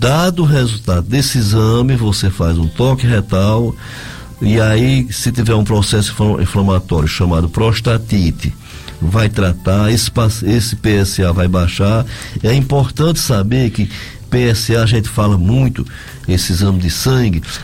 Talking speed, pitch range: 130 wpm, 100-130 Hz